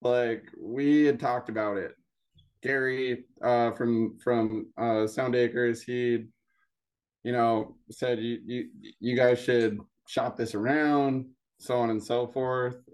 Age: 20-39